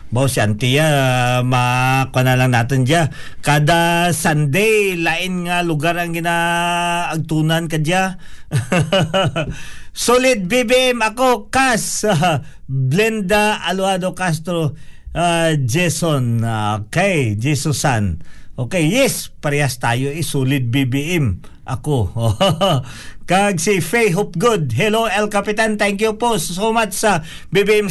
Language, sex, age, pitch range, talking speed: Filipino, male, 50-69, 150-205 Hz, 115 wpm